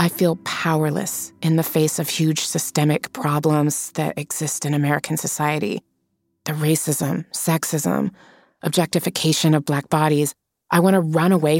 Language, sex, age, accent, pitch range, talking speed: English, female, 30-49, American, 150-190 Hz, 140 wpm